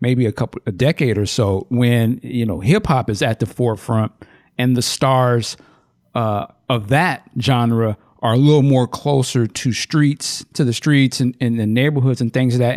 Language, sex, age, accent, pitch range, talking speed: English, male, 50-69, American, 115-145 Hz, 195 wpm